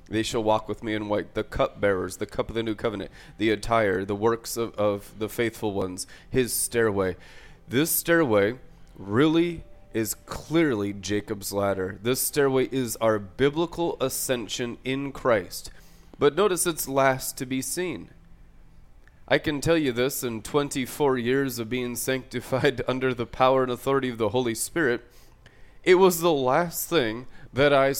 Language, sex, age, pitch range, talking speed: English, male, 20-39, 115-140 Hz, 160 wpm